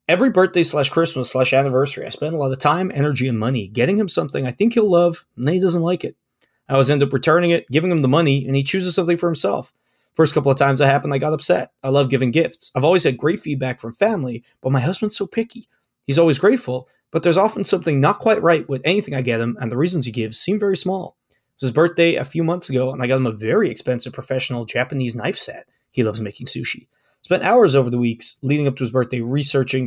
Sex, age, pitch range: male, 20-39, 125-165 Hz